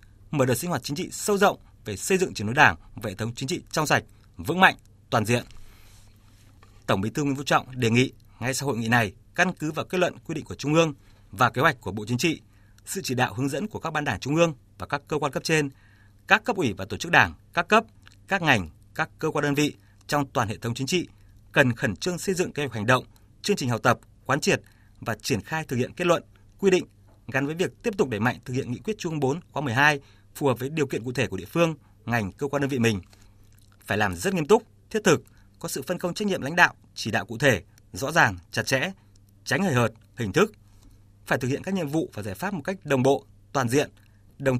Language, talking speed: Vietnamese, 260 wpm